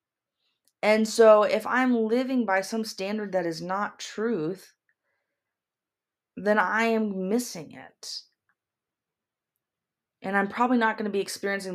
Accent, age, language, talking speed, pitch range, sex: American, 20-39, English, 130 wpm, 170-225 Hz, female